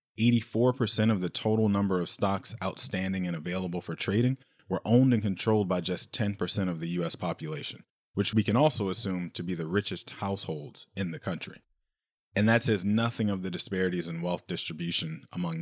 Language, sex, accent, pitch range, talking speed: English, male, American, 90-110 Hz, 175 wpm